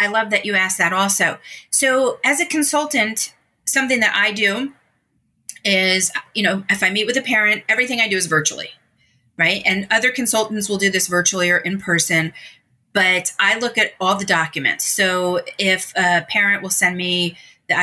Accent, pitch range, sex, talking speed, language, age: American, 180-225 Hz, female, 185 wpm, English, 30-49